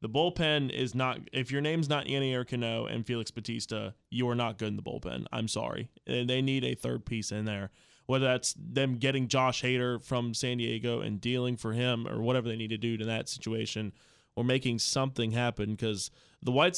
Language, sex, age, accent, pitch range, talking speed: English, male, 20-39, American, 110-125 Hz, 215 wpm